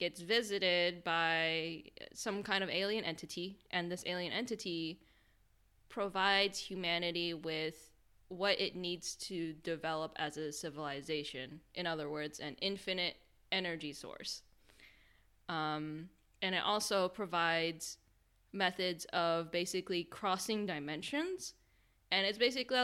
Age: 10-29